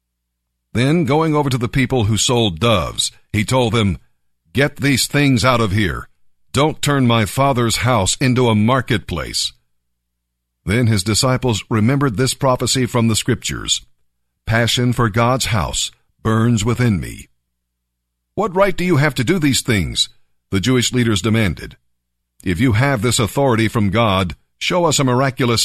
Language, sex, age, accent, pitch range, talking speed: English, male, 50-69, American, 85-130 Hz, 155 wpm